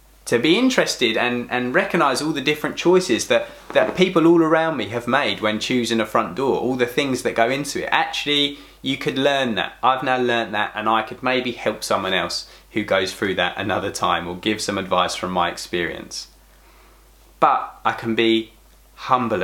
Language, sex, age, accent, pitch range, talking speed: English, male, 20-39, British, 115-135 Hz, 200 wpm